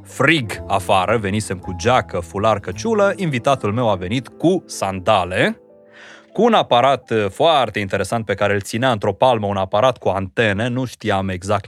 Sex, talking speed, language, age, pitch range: male, 160 wpm, Romanian, 30-49, 100-130 Hz